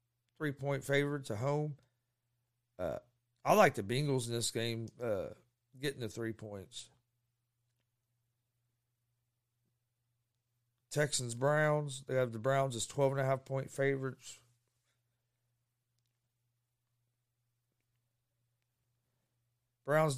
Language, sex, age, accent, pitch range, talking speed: English, male, 40-59, American, 120-135 Hz, 75 wpm